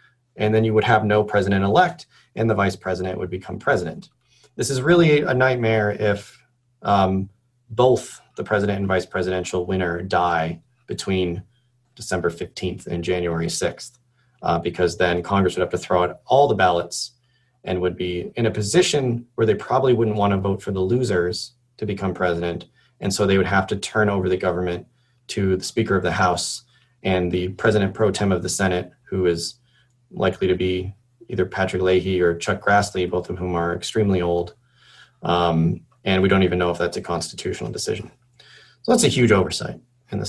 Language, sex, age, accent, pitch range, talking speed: English, male, 30-49, American, 90-125 Hz, 190 wpm